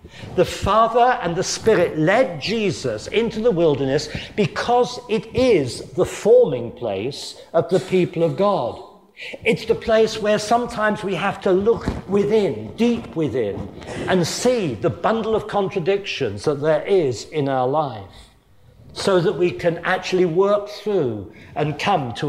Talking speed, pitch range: 150 wpm, 145-205 Hz